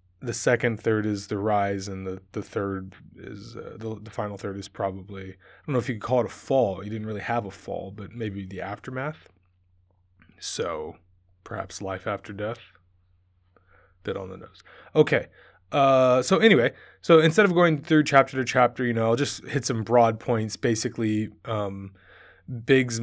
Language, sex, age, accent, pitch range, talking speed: English, male, 20-39, American, 100-120 Hz, 180 wpm